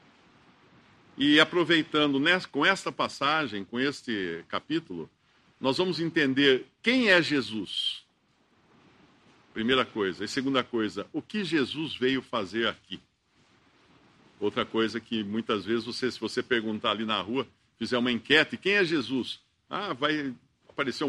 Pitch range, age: 115-155 Hz, 50-69